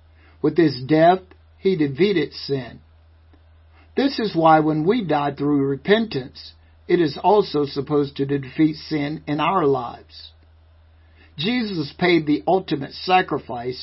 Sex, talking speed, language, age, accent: male, 125 wpm, English, 60-79, American